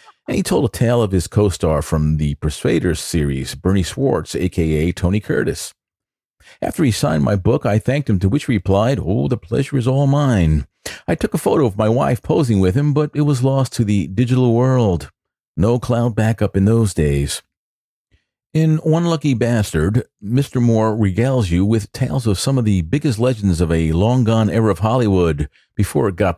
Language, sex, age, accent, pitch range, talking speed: English, male, 50-69, American, 85-125 Hz, 190 wpm